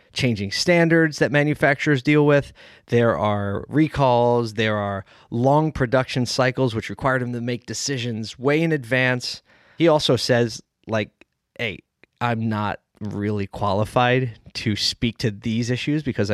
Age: 20-39